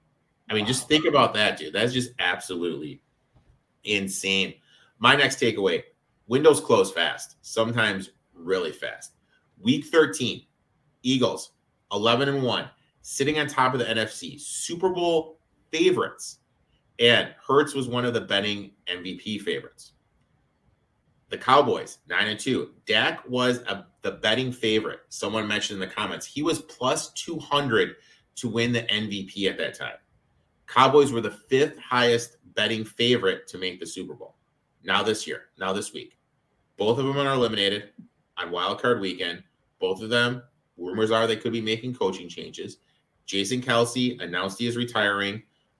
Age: 30-49